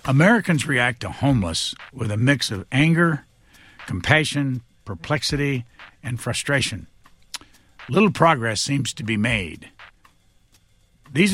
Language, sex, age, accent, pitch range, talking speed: English, male, 60-79, American, 105-145 Hz, 105 wpm